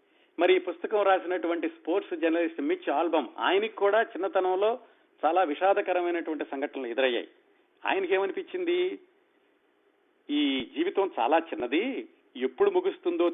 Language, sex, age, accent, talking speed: Telugu, male, 50-69, native, 100 wpm